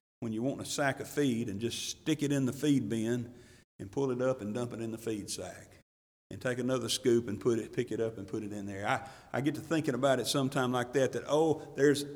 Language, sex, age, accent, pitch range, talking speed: English, male, 50-69, American, 105-140 Hz, 265 wpm